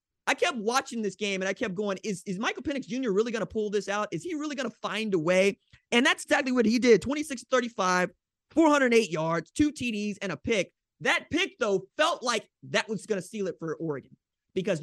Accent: American